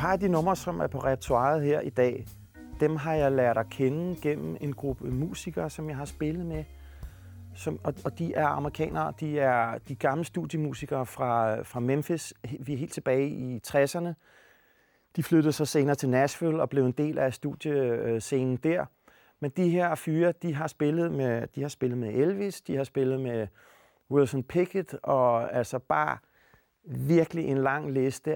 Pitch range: 125-155 Hz